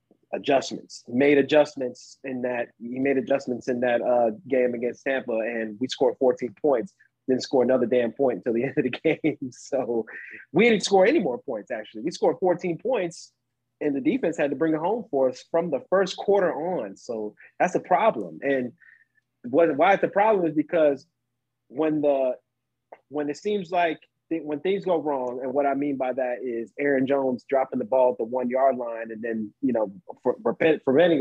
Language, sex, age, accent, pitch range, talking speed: English, male, 30-49, American, 125-165 Hz, 190 wpm